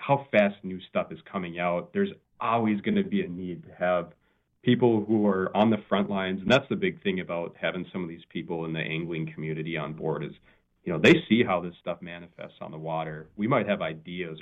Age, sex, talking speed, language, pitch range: 30-49, male, 235 wpm, English, 85-110 Hz